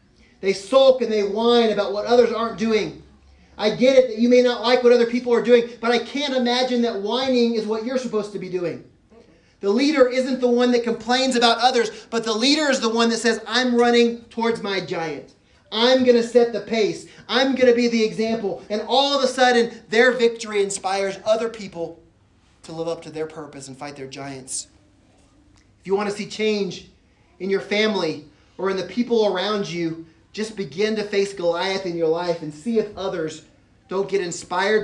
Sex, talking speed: male, 205 wpm